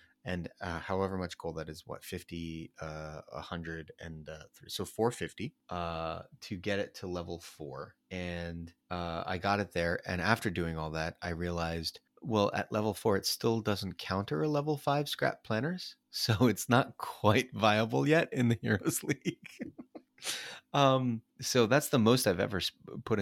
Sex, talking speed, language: male, 170 wpm, English